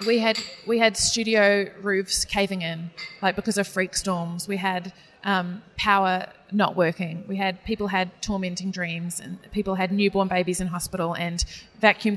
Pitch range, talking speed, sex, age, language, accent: 185-210 Hz, 170 wpm, female, 20-39, English, Australian